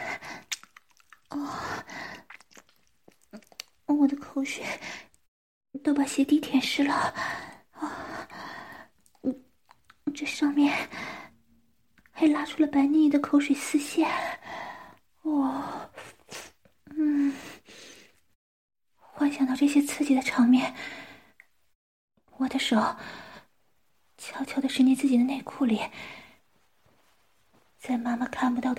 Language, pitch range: English, 250-295 Hz